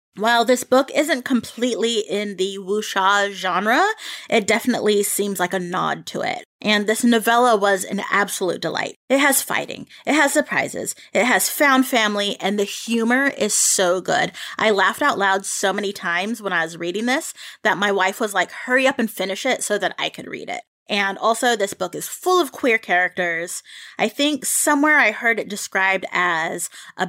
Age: 20-39